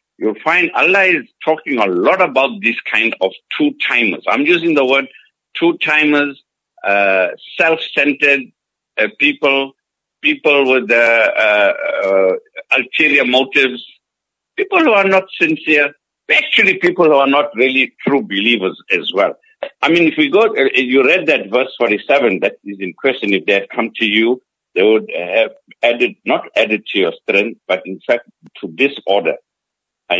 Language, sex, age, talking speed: English, male, 60-79, 155 wpm